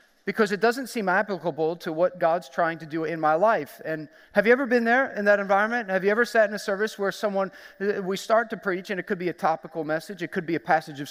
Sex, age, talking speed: male, 40-59, 265 wpm